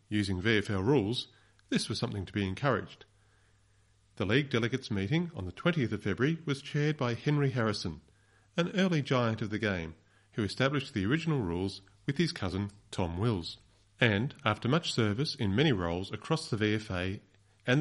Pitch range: 100-130 Hz